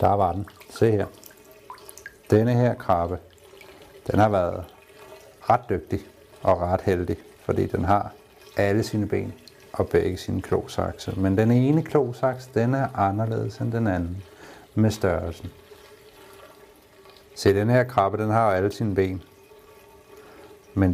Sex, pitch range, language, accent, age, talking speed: male, 95-120 Hz, Danish, native, 60-79, 140 wpm